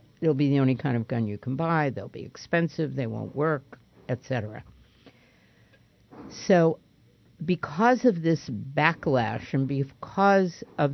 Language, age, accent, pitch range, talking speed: English, 60-79, American, 125-155 Hz, 145 wpm